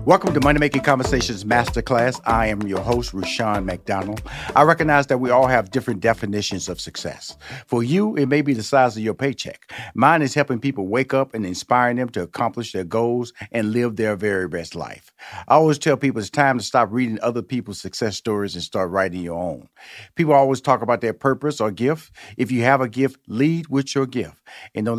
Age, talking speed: 50-69, 210 wpm